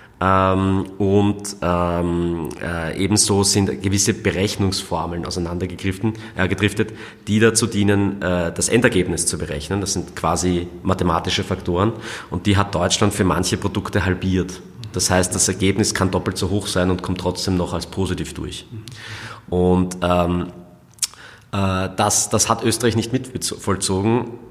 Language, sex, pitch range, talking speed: German, male, 90-105 Hz, 135 wpm